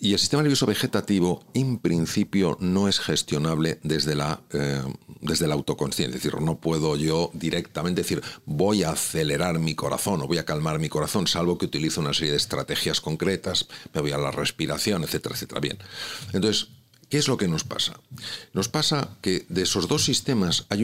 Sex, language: male, Spanish